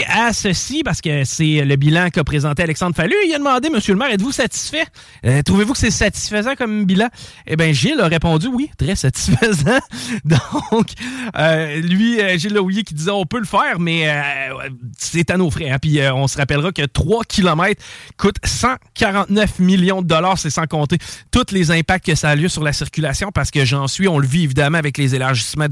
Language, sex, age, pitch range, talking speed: French, male, 30-49, 145-200 Hz, 210 wpm